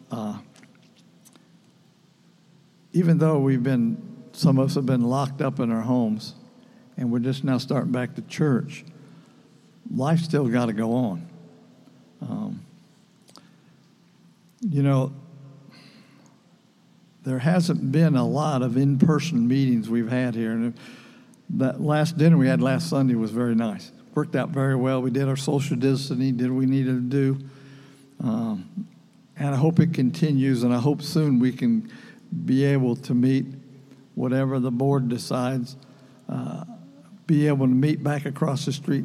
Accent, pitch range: American, 130-160 Hz